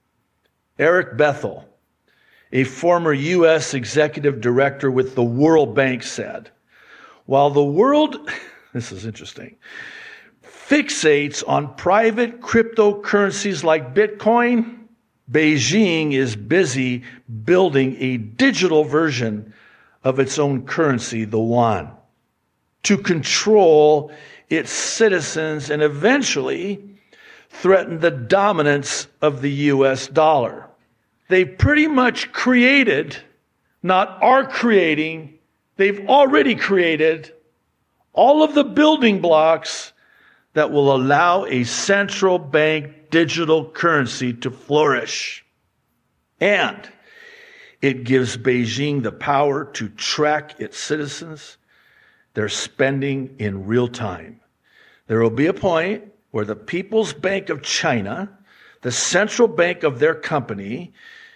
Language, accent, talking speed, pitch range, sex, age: English, American, 105 wpm, 130-200 Hz, male, 60-79